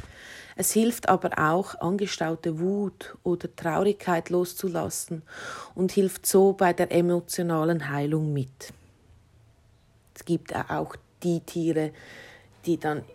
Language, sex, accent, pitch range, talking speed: German, female, Austrian, 155-185 Hz, 110 wpm